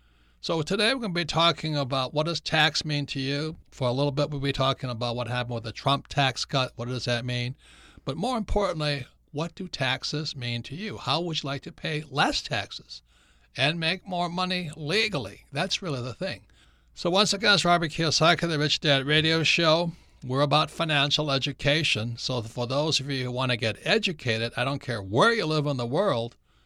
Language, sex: English, male